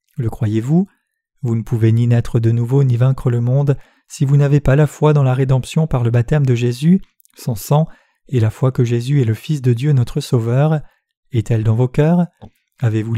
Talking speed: 215 wpm